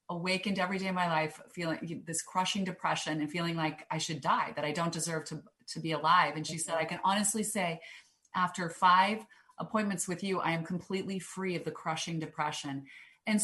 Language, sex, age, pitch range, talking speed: English, female, 30-49, 165-210 Hz, 200 wpm